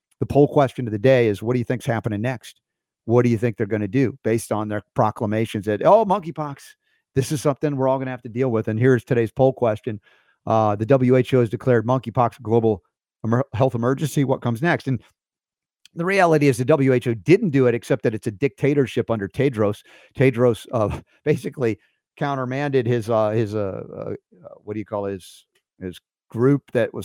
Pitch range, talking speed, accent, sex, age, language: 110-130 Hz, 205 wpm, American, male, 50-69, English